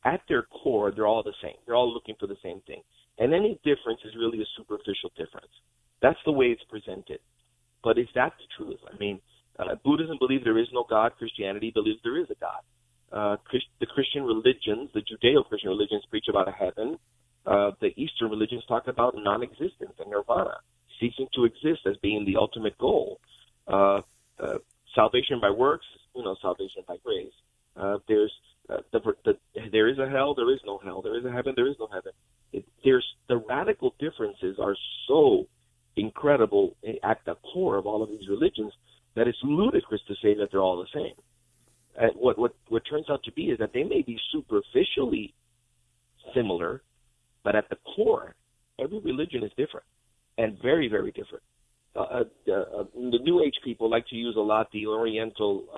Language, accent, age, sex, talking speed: English, American, 30-49, male, 185 wpm